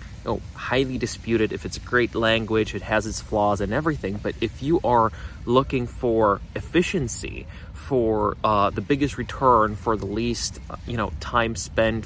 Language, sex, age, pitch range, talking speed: English, male, 30-49, 100-120 Hz, 165 wpm